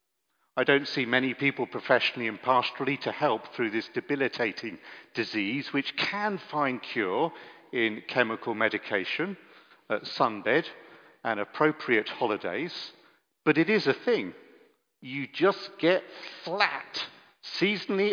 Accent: British